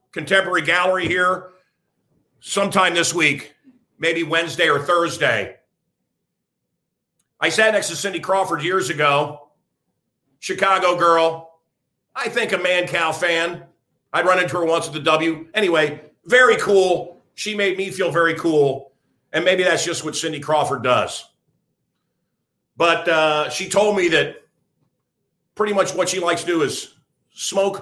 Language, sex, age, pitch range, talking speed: English, male, 50-69, 145-185 Hz, 140 wpm